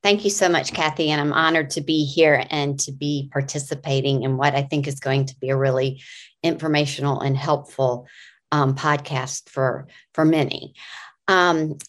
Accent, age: American, 40-59